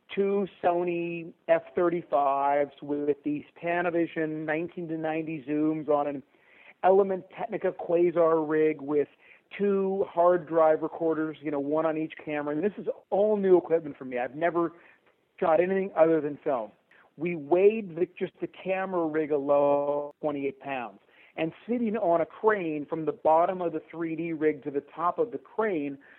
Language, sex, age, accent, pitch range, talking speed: English, male, 40-59, American, 150-185 Hz, 155 wpm